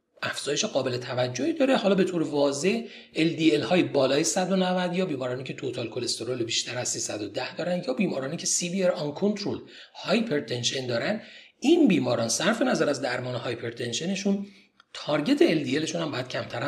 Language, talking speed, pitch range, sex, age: Persian, 160 wpm, 125-190 Hz, male, 40-59